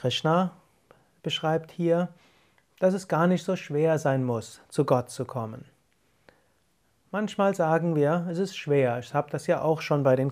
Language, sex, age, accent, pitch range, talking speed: German, male, 30-49, German, 140-170 Hz, 170 wpm